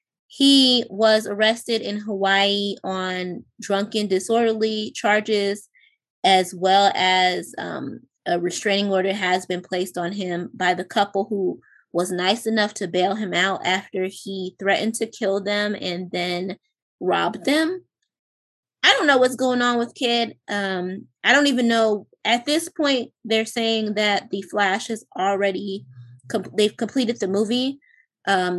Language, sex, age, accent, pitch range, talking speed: English, female, 20-39, American, 190-240 Hz, 150 wpm